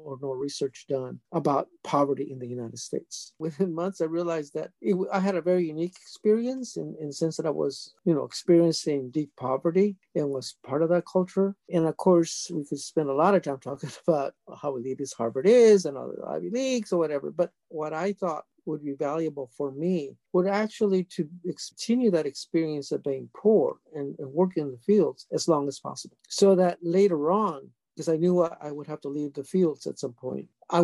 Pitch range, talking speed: 150-185 Hz, 200 wpm